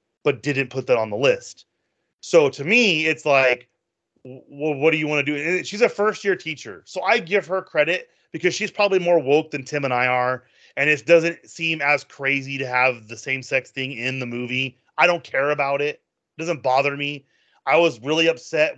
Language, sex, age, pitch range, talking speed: English, male, 30-49, 125-160 Hz, 210 wpm